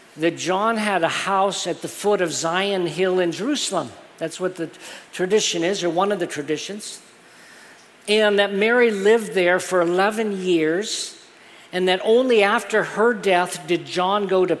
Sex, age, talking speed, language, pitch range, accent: male, 50-69, 170 wpm, English, 165-195 Hz, American